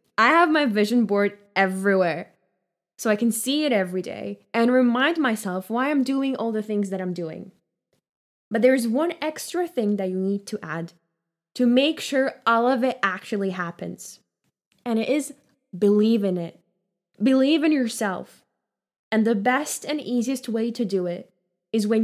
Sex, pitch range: female, 190-260 Hz